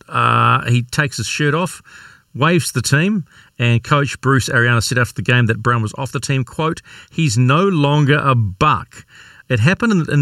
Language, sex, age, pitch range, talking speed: English, male, 40-59, 120-160 Hz, 190 wpm